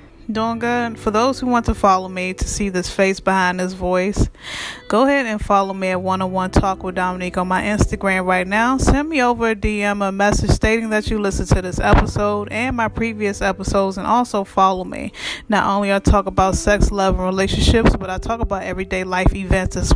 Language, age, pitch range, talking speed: English, 20-39, 185-225 Hz, 210 wpm